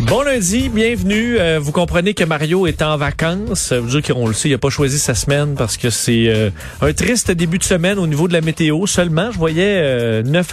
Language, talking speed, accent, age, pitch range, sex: French, 245 wpm, Canadian, 40-59, 135-180 Hz, male